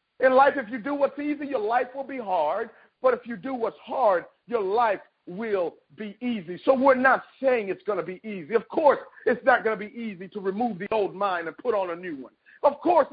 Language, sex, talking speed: English, male, 240 wpm